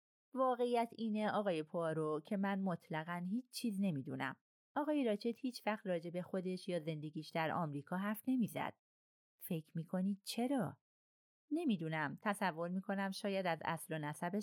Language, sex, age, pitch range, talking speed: Persian, female, 30-49, 155-220 Hz, 150 wpm